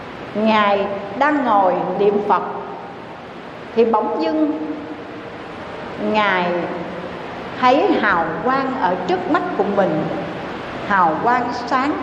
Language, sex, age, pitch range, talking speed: Vietnamese, female, 60-79, 210-295 Hz, 100 wpm